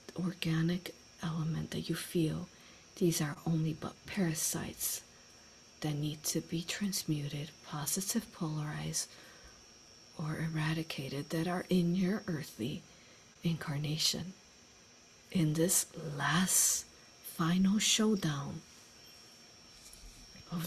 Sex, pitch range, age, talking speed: female, 160-180 Hz, 50-69, 90 wpm